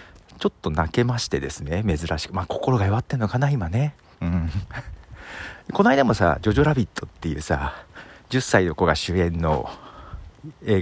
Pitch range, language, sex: 85-120 Hz, Japanese, male